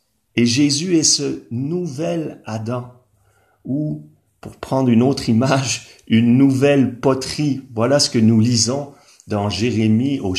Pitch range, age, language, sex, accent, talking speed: 95-120 Hz, 40-59, French, male, French, 135 wpm